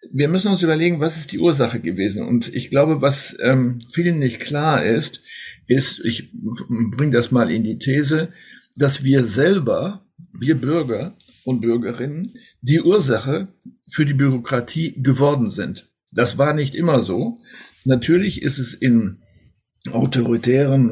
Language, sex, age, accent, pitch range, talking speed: German, male, 60-79, German, 115-145 Hz, 145 wpm